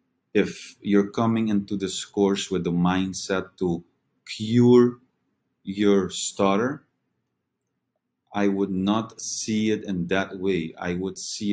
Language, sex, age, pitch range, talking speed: English, male, 30-49, 90-105 Hz, 125 wpm